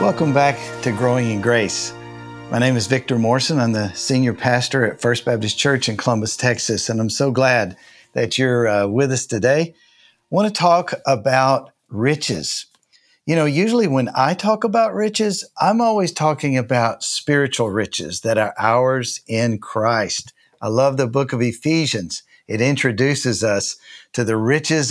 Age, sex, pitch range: 50-69, male, 120-160 Hz